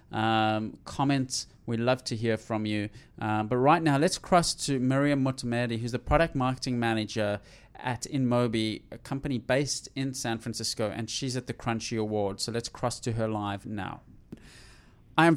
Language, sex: English, male